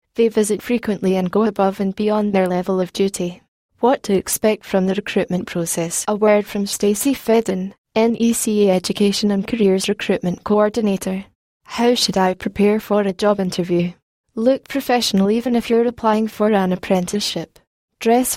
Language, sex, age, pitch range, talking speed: English, female, 10-29, 185-215 Hz, 155 wpm